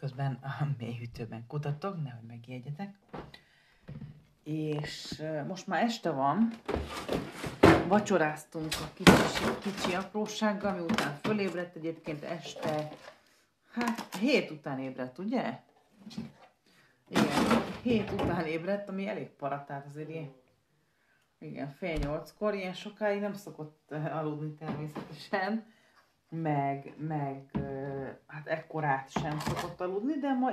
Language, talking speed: Hungarian, 100 wpm